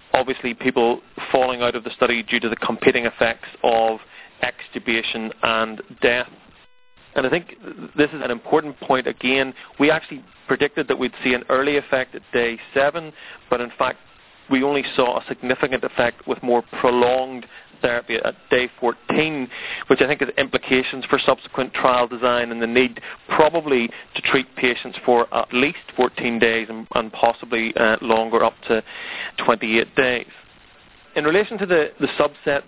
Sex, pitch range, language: male, 120-135 Hz, English